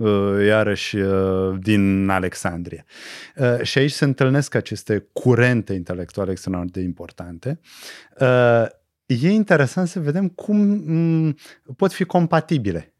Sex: male